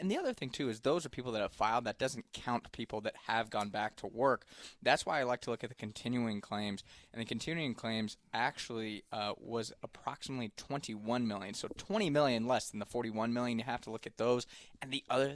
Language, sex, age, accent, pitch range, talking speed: English, male, 20-39, American, 110-125 Hz, 230 wpm